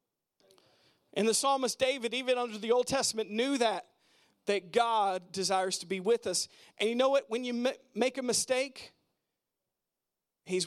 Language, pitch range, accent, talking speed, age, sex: English, 195-260 Hz, American, 155 wpm, 40-59, male